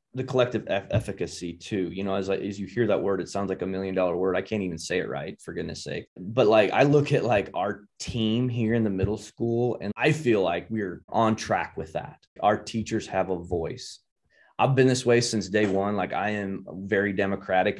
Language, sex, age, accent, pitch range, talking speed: English, male, 20-39, American, 95-120 Hz, 235 wpm